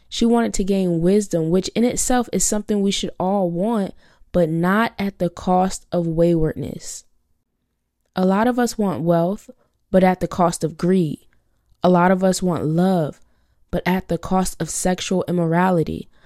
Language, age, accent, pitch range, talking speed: English, 20-39, American, 175-210 Hz, 170 wpm